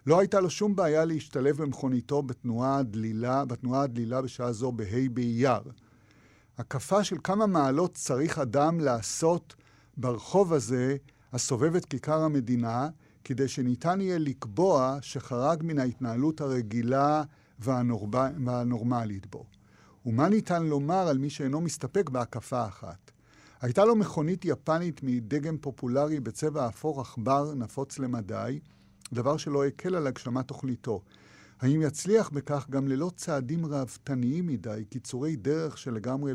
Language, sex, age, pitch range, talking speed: Hebrew, male, 50-69, 120-150 Hz, 125 wpm